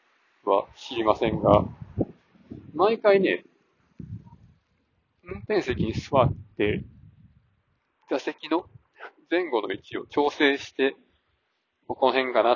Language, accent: Japanese, native